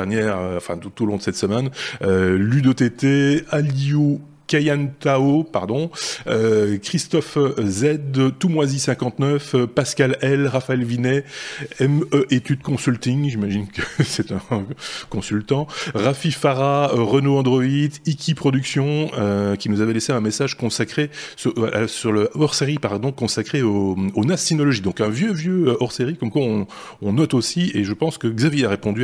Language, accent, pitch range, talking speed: French, French, 105-140 Hz, 160 wpm